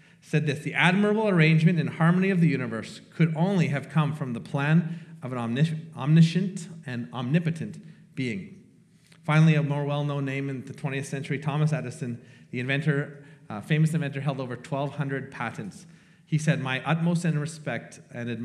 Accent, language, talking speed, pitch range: American, English, 160 wpm, 145-180 Hz